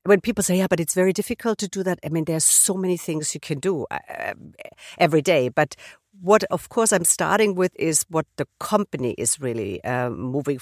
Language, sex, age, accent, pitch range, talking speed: English, female, 50-69, German, 140-190 Hz, 215 wpm